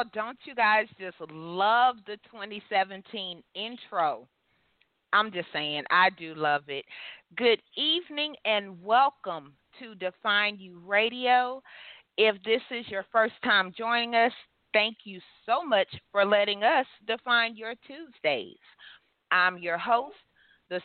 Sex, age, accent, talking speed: female, 30-49, American, 130 wpm